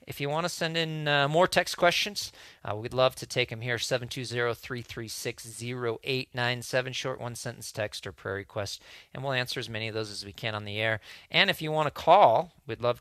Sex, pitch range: male, 110-130 Hz